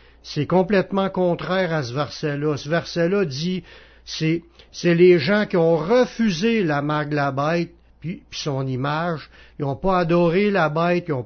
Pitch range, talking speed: 145-185 Hz, 175 wpm